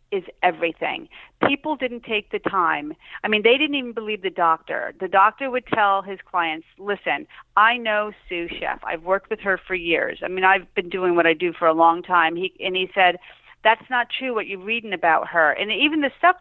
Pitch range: 185-265 Hz